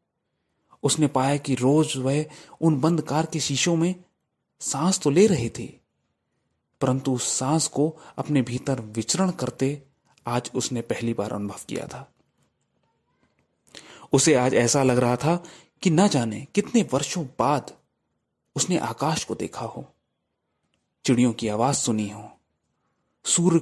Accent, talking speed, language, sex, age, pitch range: native, 130 wpm, Hindi, male, 30-49, 125-170 Hz